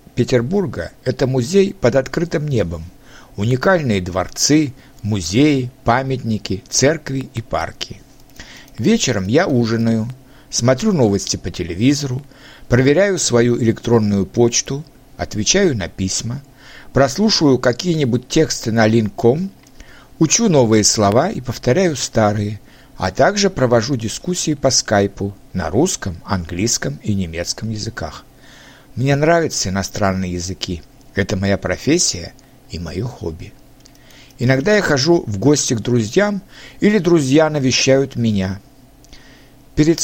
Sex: male